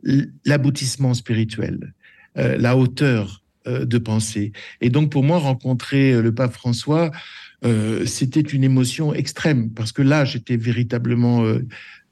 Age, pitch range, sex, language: 60-79, 115-145 Hz, male, French